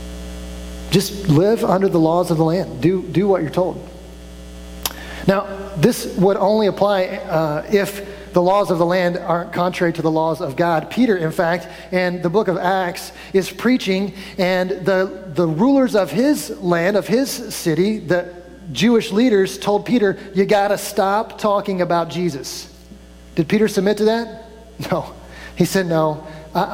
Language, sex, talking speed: English, male, 165 wpm